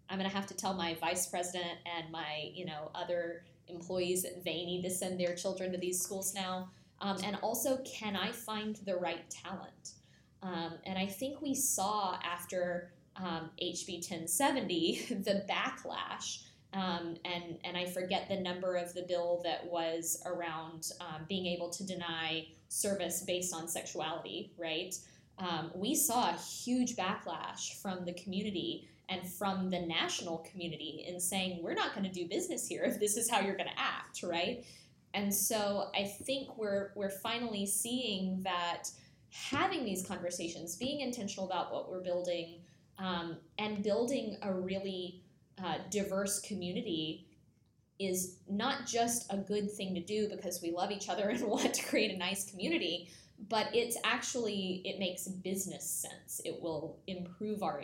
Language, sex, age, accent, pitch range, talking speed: English, female, 10-29, American, 175-205 Hz, 165 wpm